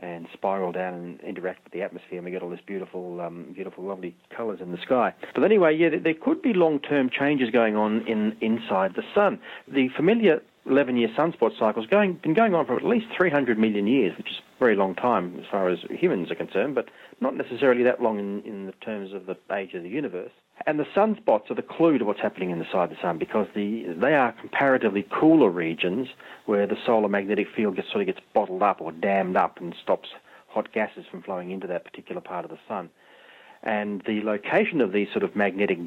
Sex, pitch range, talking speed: male, 100-145 Hz, 220 wpm